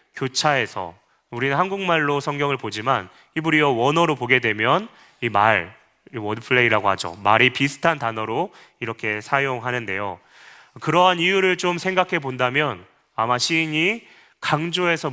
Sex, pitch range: male, 120-160 Hz